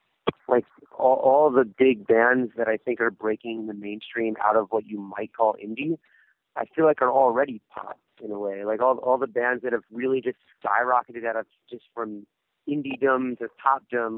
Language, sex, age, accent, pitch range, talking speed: English, male, 30-49, American, 110-130 Hz, 205 wpm